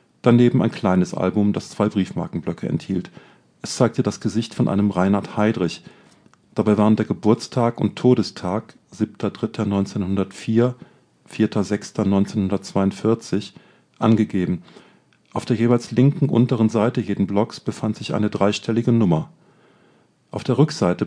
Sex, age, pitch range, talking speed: male, 40-59, 95-115 Hz, 115 wpm